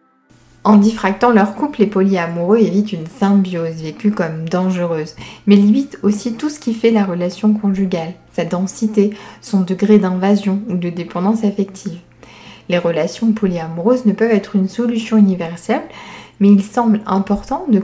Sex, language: female, French